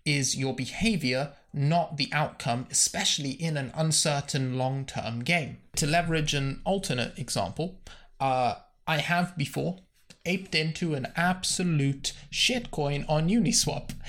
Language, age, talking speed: English, 20-39, 120 wpm